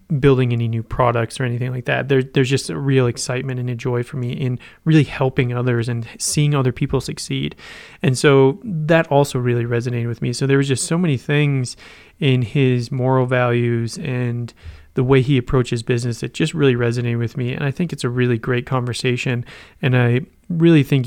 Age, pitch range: 30-49, 125-145 Hz